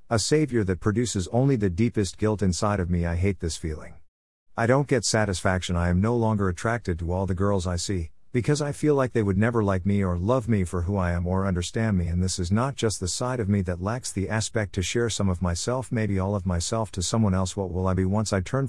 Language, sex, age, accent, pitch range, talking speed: English, male, 50-69, American, 90-115 Hz, 260 wpm